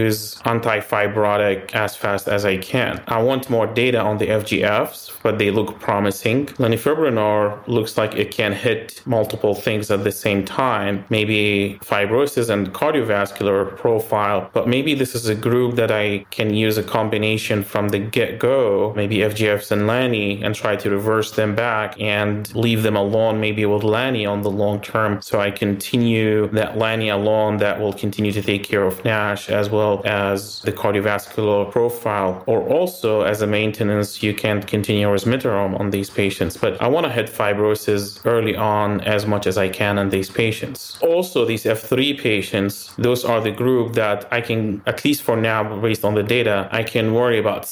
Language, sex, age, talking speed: English, male, 30-49, 180 wpm